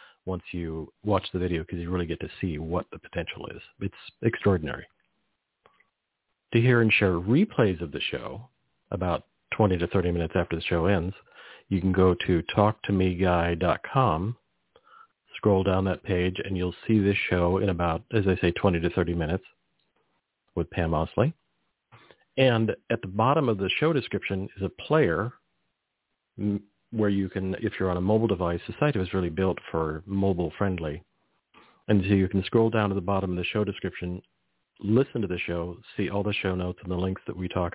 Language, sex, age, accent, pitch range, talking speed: English, male, 50-69, American, 85-100 Hz, 185 wpm